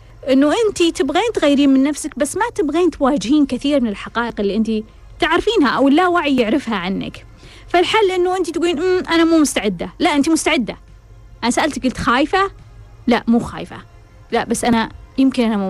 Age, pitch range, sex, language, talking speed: 20-39, 225-325 Hz, female, Arabic, 170 wpm